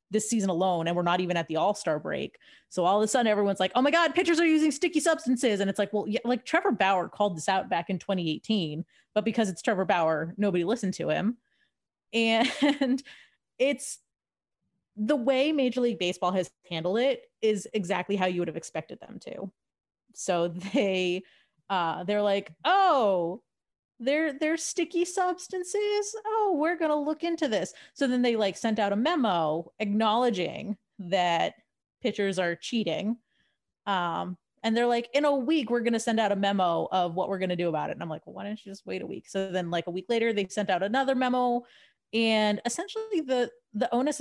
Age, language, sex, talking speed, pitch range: 30-49, English, female, 195 wpm, 190-270 Hz